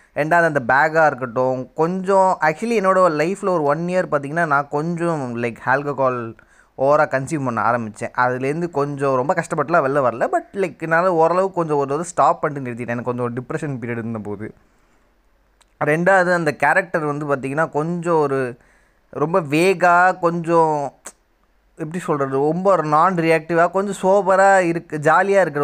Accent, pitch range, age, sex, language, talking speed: native, 135-185 Hz, 20-39, male, Tamil, 140 wpm